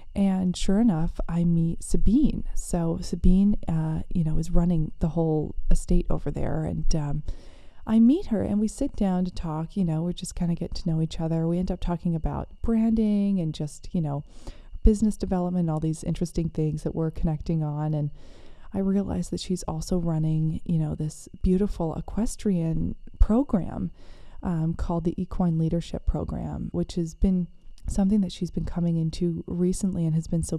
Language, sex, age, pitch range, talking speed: English, female, 20-39, 165-195 Hz, 180 wpm